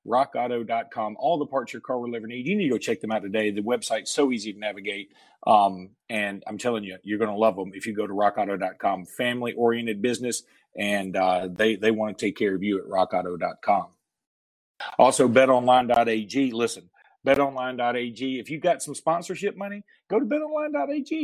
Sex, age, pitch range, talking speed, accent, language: male, 40-59, 110-150 Hz, 180 wpm, American, English